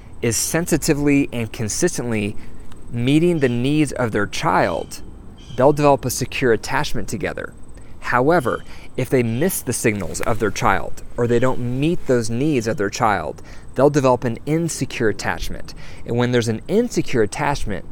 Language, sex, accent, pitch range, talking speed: English, male, American, 115-140 Hz, 150 wpm